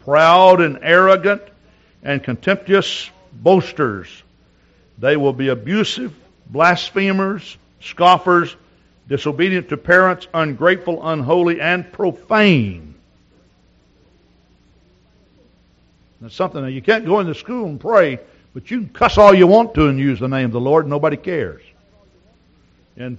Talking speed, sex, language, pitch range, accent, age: 120 wpm, male, English, 120-190 Hz, American, 60-79